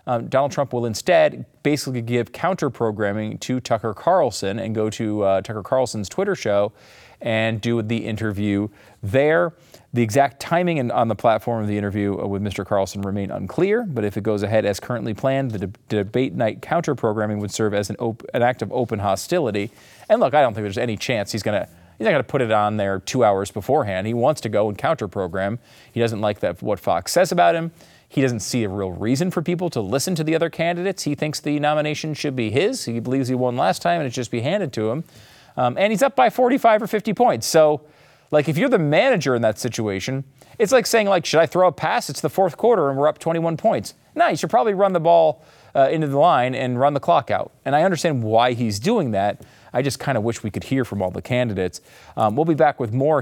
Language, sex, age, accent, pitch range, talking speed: English, male, 30-49, American, 110-155 Hz, 235 wpm